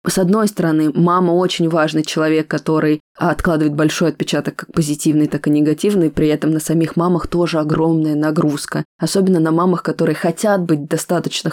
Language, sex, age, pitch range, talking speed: Russian, female, 20-39, 155-180 Hz, 160 wpm